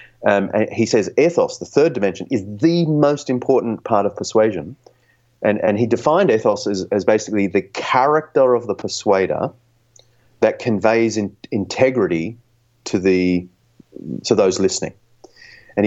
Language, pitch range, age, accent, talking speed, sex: English, 100-120 Hz, 30-49, Australian, 145 wpm, male